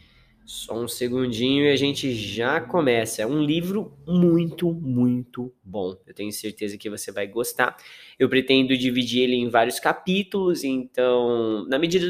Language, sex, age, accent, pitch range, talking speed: English, male, 10-29, Brazilian, 120-175 Hz, 155 wpm